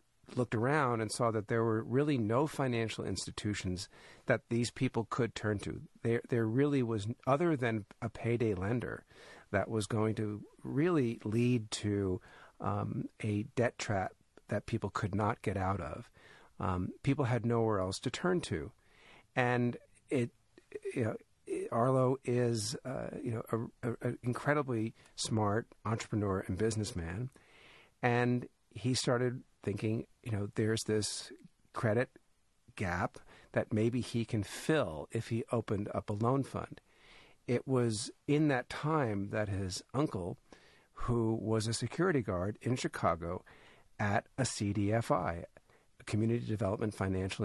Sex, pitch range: male, 105-125 Hz